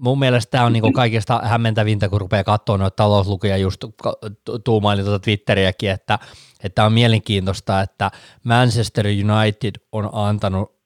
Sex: male